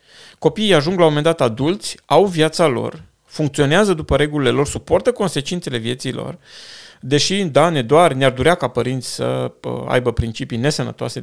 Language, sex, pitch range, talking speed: Romanian, male, 125-165 Hz, 160 wpm